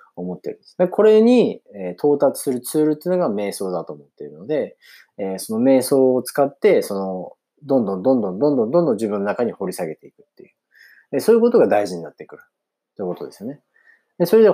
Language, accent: Japanese, native